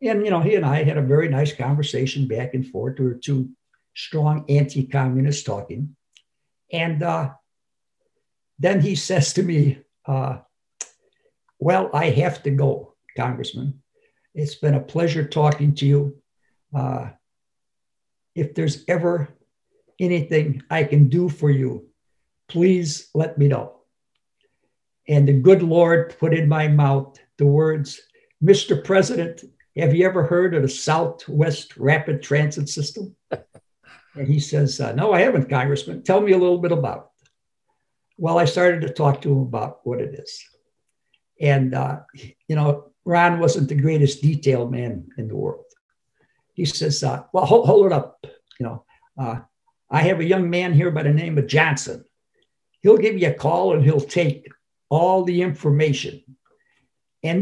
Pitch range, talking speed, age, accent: 140-175 Hz, 155 wpm, 60-79, American